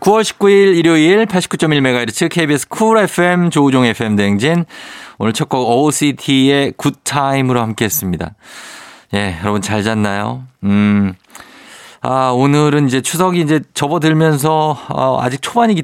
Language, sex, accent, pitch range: Korean, male, native, 105-155 Hz